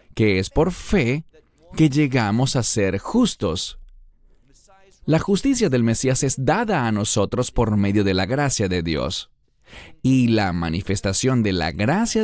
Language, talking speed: English, 145 wpm